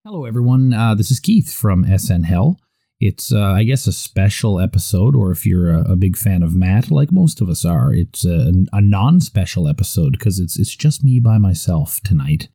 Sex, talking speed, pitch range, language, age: male, 205 wpm, 95-125 Hz, English, 30-49